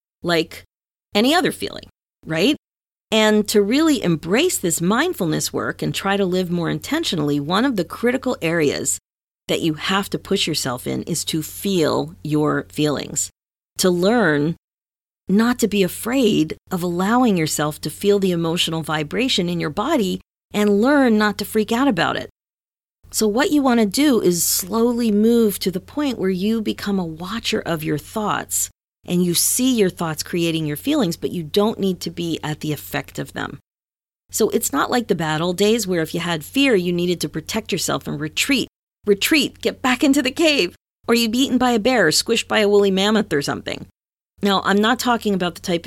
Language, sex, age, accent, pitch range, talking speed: English, female, 40-59, American, 160-220 Hz, 190 wpm